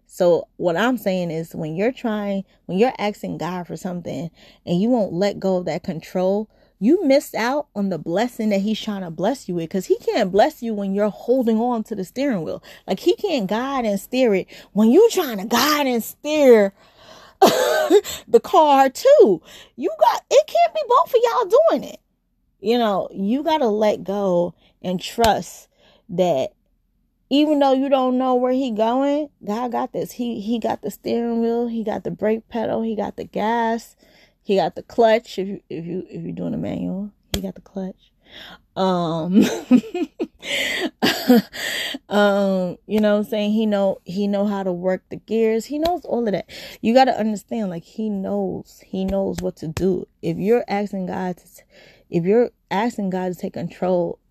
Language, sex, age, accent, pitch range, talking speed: English, female, 20-39, American, 190-255 Hz, 190 wpm